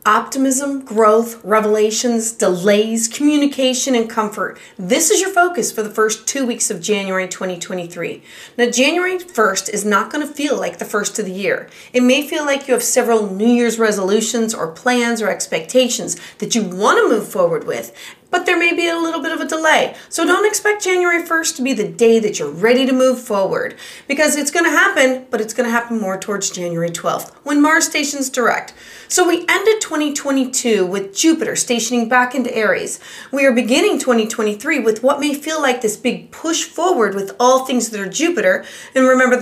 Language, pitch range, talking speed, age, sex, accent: English, 220-295 Hz, 190 wpm, 30-49, female, American